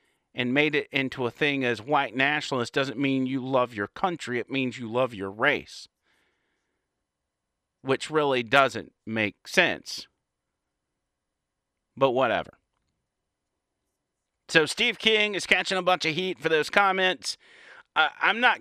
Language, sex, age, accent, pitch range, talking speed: English, male, 40-59, American, 115-165 Hz, 135 wpm